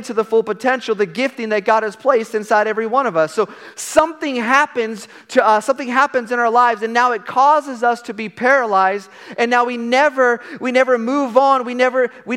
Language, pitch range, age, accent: English, 210-250 Hz, 40-59, American